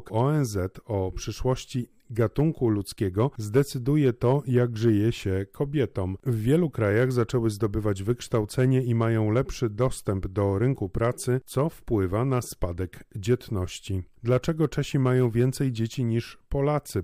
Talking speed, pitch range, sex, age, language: 125 wpm, 105-130 Hz, male, 30-49, Polish